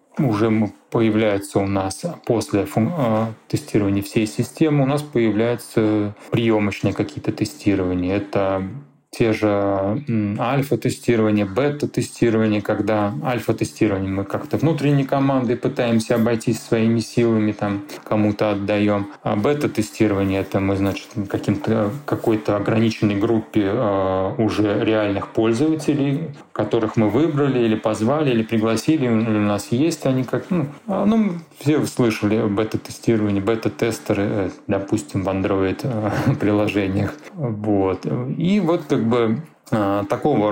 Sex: male